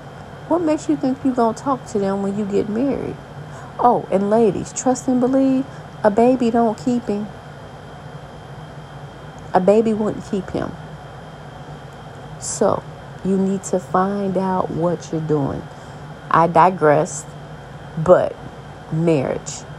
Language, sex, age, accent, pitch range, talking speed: English, female, 40-59, American, 145-180 Hz, 130 wpm